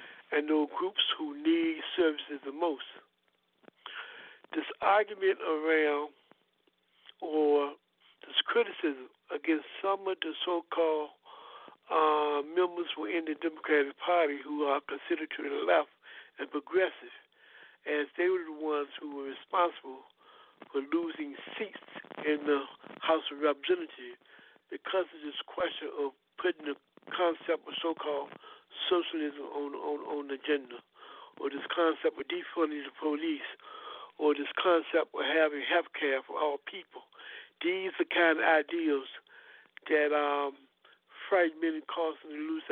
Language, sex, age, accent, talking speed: English, male, 60-79, American, 135 wpm